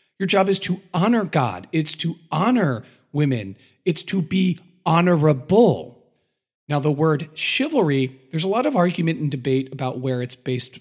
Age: 40-59